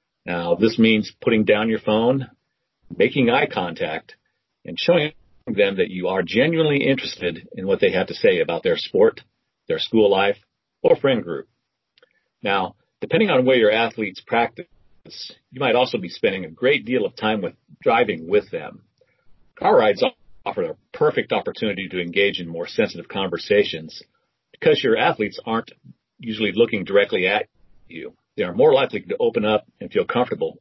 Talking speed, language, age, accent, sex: 165 wpm, English, 40-59, American, male